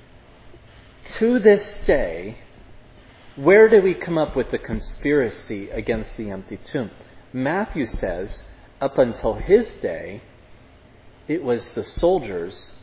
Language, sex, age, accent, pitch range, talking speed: English, male, 30-49, American, 105-165 Hz, 115 wpm